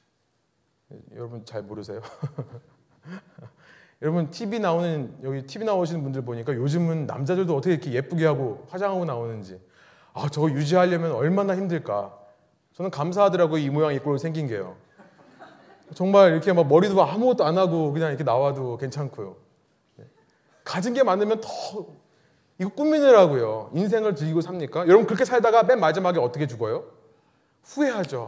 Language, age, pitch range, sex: Korean, 30-49, 140-210 Hz, male